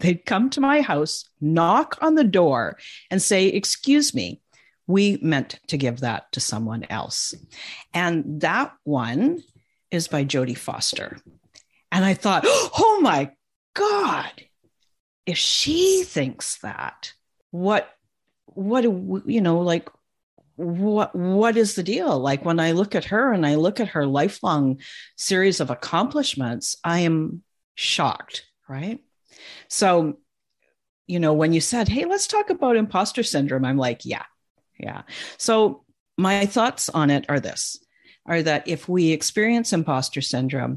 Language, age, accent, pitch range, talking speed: English, 50-69, American, 145-220 Hz, 145 wpm